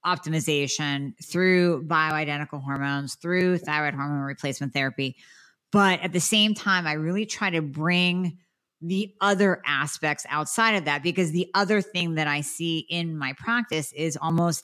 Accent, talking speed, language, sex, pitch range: American, 150 wpm, English, female, 155-210 Hz